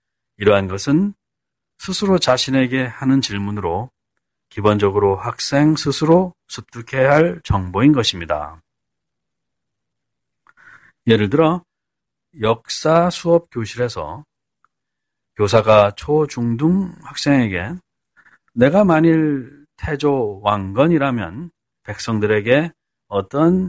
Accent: native